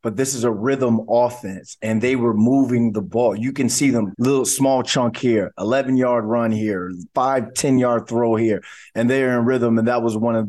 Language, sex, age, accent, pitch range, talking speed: English, male, 20-39, American, 110-130 Hz, 215 wpm